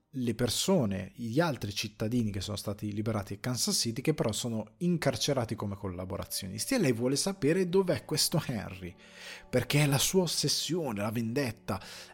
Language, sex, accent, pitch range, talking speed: Italian, male, native, 105-140 Hz, 160 wpm